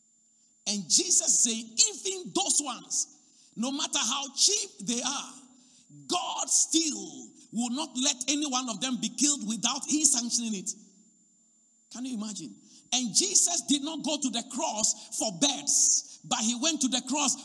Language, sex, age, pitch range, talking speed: English, male, 50-69, 220-285 Hz, 160 wpm